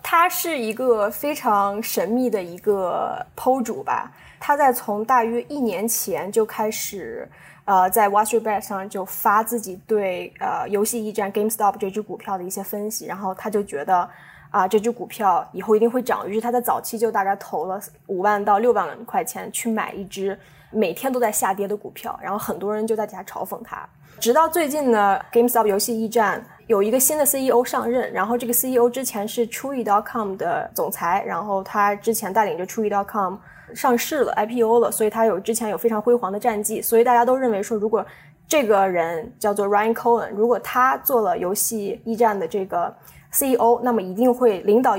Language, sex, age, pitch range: Chinese, female, 10-29, 200-240 Hz